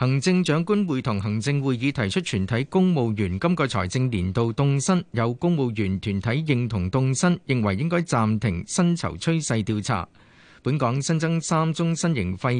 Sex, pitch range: male, 110-155 Hz